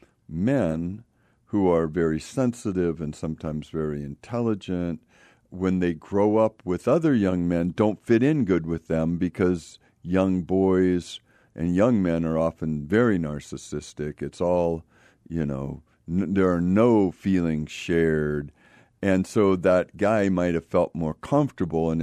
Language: English